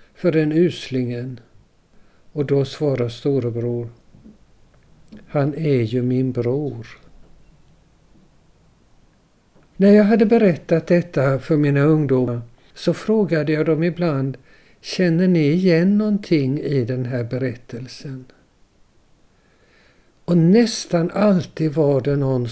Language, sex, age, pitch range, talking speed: Swedish, male, 60-79, 125-160 Hz, 105 wpm